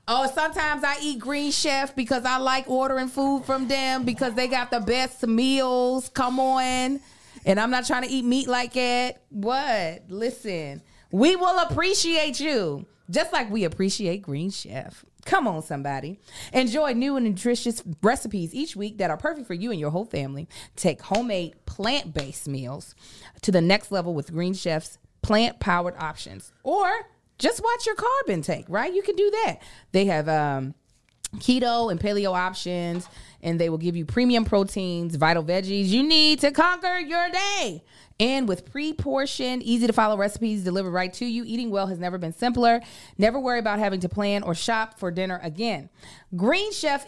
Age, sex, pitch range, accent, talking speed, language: 30-49, female, 180-265 Hz, American, 170 wpm, English